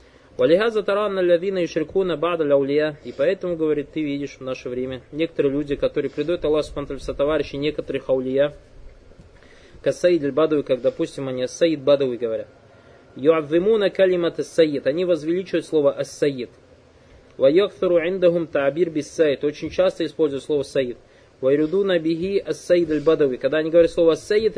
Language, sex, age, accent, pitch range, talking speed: Russian, male, 20-39, native, 140-170 Hz, 105 wpm